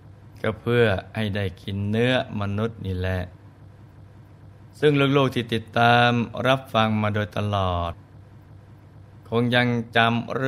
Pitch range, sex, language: 100-115 Hz, male, Thai